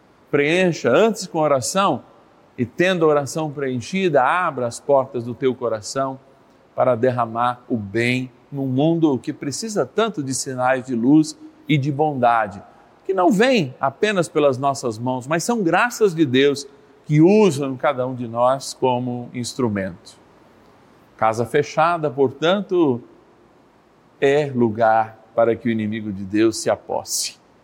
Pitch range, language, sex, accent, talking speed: 120-160 Hz, Portuguese, male, Brazilian, 140 wpm